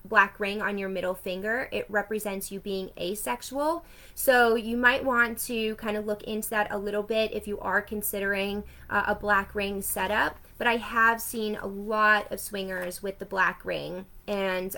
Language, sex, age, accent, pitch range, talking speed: English, female, 20-39, American, 190-225 Hz, 185 wpm